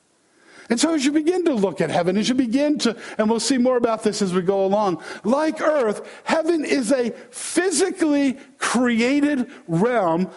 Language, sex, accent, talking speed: English, male, American, 180 wpm